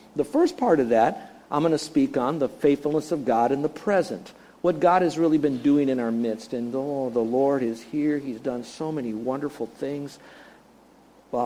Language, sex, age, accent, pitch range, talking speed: English, male, 50-69, American, 130-185 Hz, 205 wpm